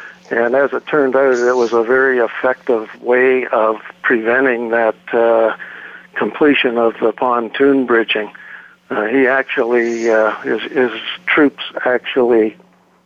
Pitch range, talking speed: 115-130 Hz, 130 wpm